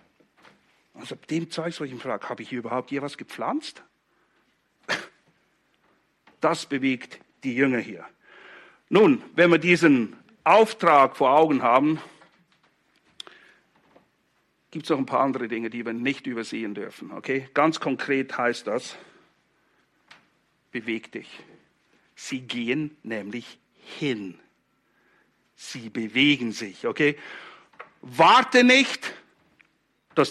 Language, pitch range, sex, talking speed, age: English, 135-215 Hz, male, 110 wpm, 60-79